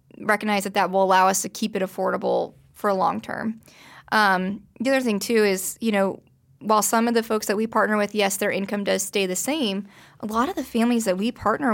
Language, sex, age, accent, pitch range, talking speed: English, female, 20-39, American, 195-225 Hz, 235 wpm